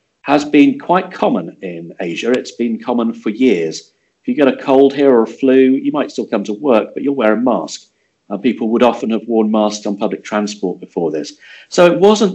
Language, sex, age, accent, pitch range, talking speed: English, male, 50-69, British, 100-140 Hz, 225 wpm